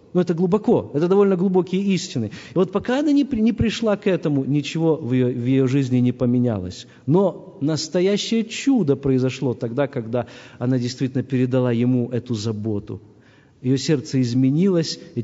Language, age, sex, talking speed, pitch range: Russian, 50-69, male, 155 wpm, 130-210 Hz